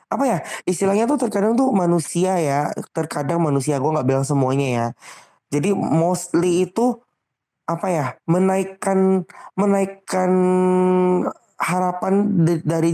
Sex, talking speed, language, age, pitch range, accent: male, 115 wpm, Indonesian, 20-39, 145-185 Hz, native